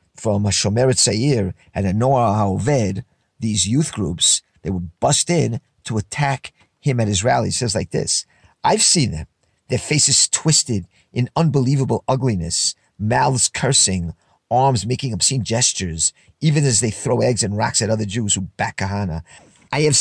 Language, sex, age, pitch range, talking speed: English, male, 50-69, 105-140 Hz, 160 wpm